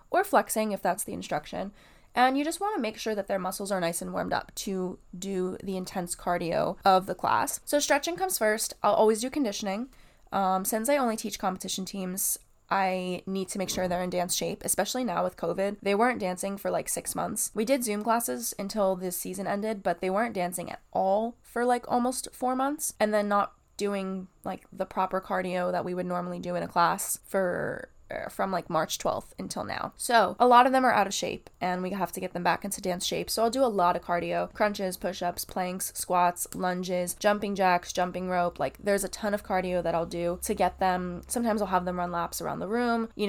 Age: 10-29